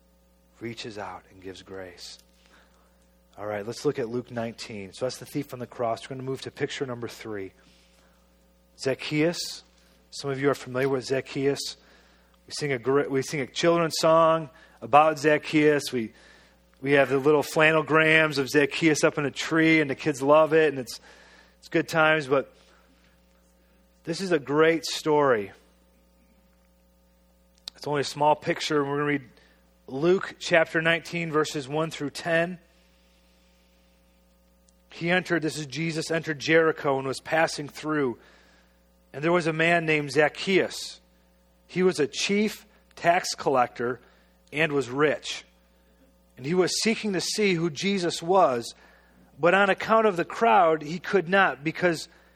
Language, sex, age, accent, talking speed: English, male, 30-49, American, 155 wpm